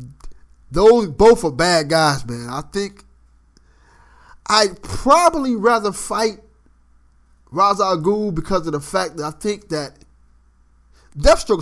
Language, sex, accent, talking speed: English, male, American, 115 wpm